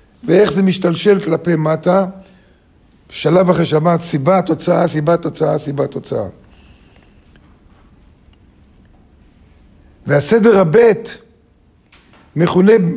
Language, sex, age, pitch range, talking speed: Hebrew, male, 50-69, 150-190 Hz, 70 wpm